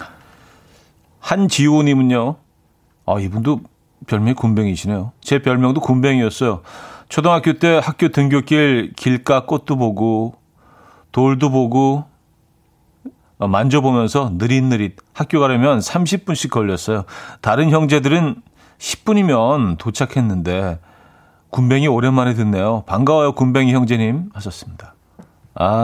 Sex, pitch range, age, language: male, 105-140 Hz, 40-59, Korean